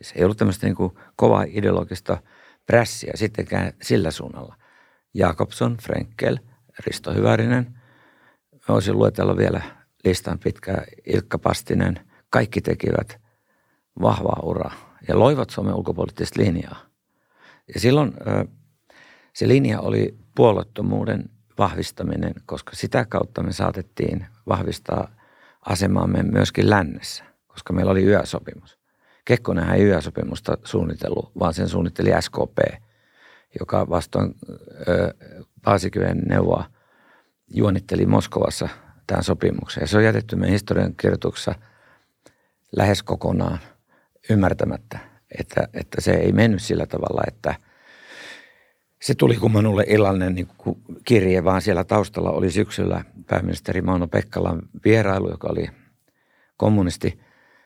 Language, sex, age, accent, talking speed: Finnish, male, 50-69, native, 100 wpm